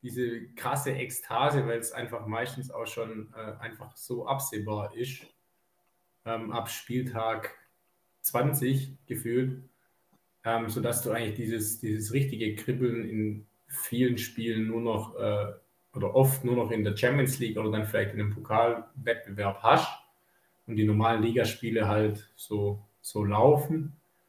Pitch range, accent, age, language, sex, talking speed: 105-130 Hz, German, 20-39, German, male, 140 wpm